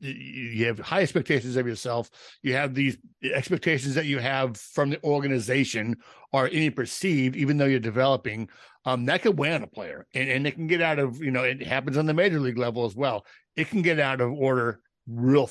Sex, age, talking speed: male, 60-79, 215 wpm